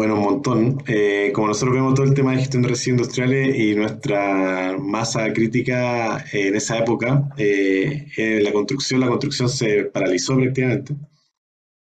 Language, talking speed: Spanish, 145 wpm